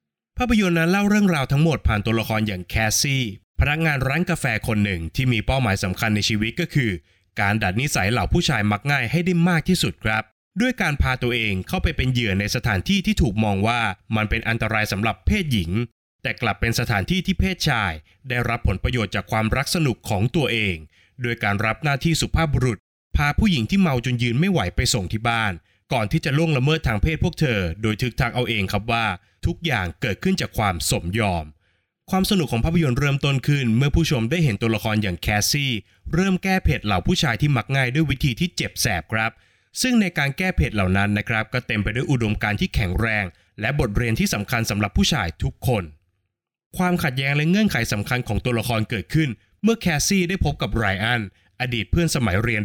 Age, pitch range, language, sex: 20-39, 105-150 Hz, Thai, male